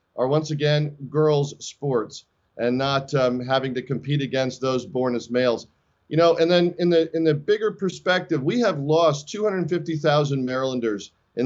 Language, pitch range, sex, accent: English, 130-160 Hz, male, American